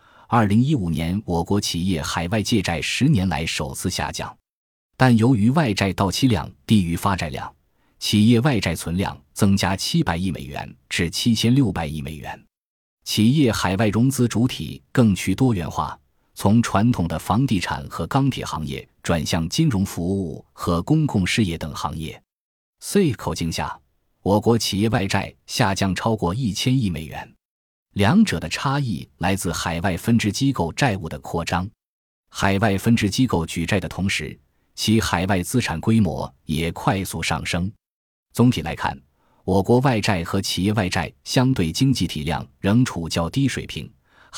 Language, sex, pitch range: Chinese, male, 85-115 Hz